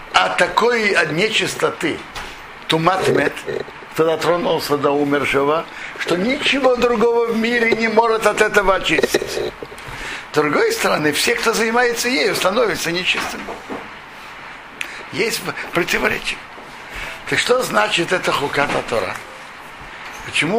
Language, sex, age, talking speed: Russian, male, 60-79, 105 wpm